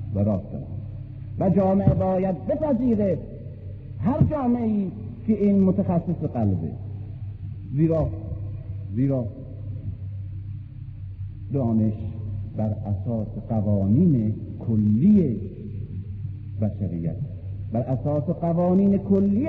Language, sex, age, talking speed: Persian, male, 50-69, 75 wpm